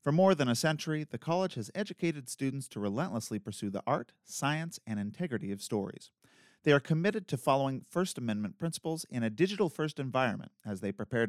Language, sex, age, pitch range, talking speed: English, male, 40-59, 120-175 Hz, 185 wpm